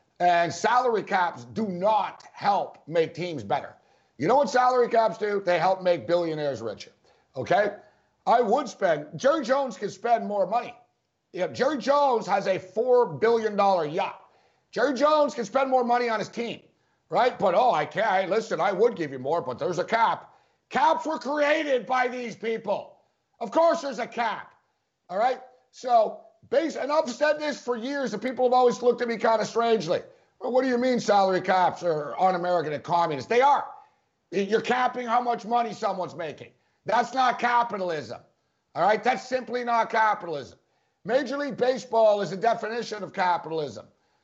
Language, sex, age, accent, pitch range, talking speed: English, male, 50-69, American, 195-255 Hz, 170 wpm